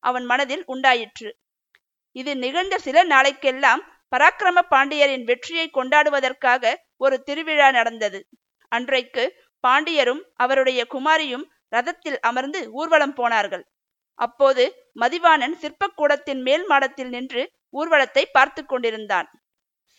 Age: 50-69